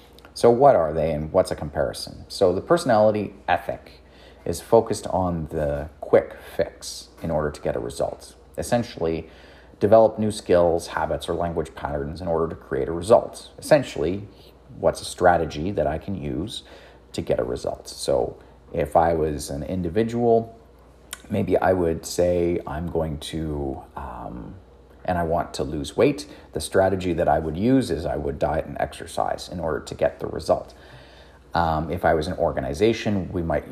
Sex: male